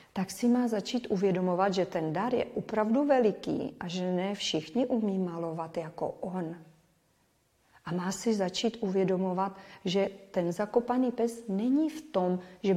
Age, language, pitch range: 40-59, Czech, 185-225 Hz